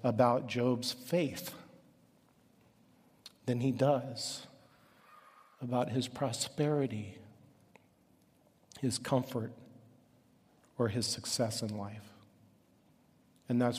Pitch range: 115-145 Hz